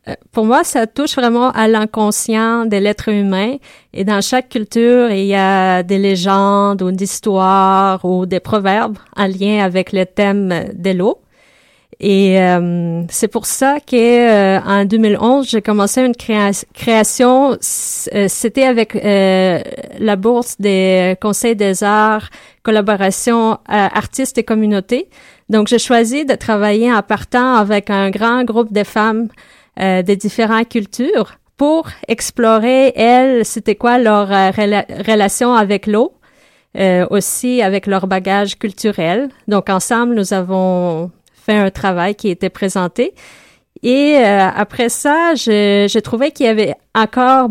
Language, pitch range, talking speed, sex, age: French, 200-240 Hz, 140 wpm, female, 30-49